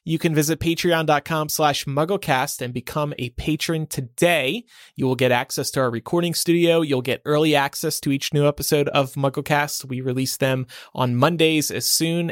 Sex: male